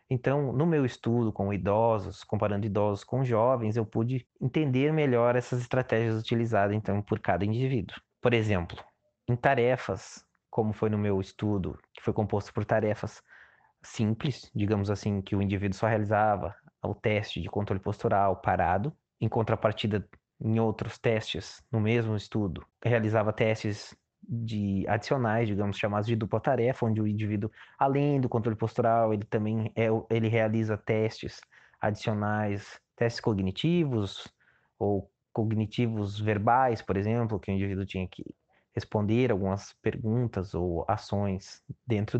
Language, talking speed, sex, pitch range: Portuguese, 140 wpm, male, 100-120 Hz